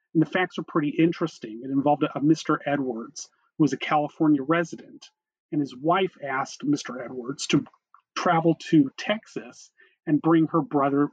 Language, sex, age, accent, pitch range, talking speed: English, male, 40-59, American, 135-180 Hz, 160 wpm